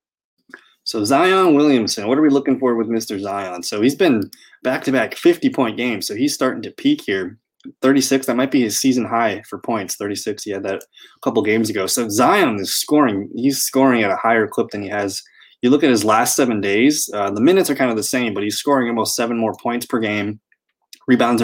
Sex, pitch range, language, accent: male, 105-135 Hz, English, American